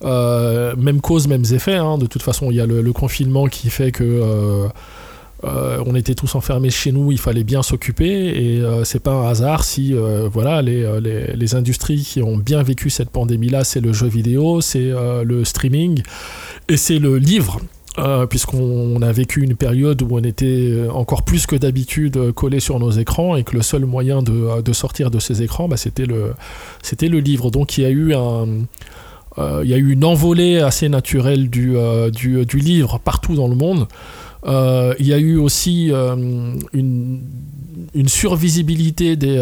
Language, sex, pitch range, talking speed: French, male, 120-140 Hz, 200 wpm